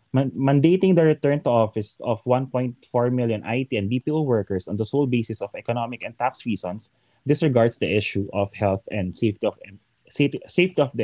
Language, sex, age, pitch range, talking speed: Filipino, male, 20-39, 105-140 Hz, 180 wpm